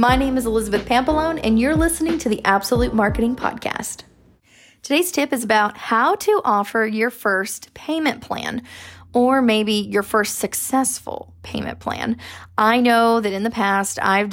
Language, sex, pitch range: English, female, 210-265 Hz